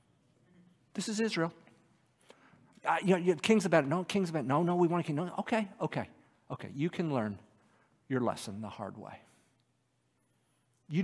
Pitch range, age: 115-140 Hz, 50-69